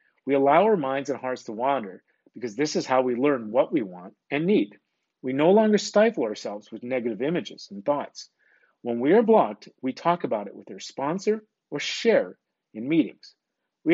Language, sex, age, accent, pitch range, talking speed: English, male, 40-59, American, 115-175 Hz, 195 wpm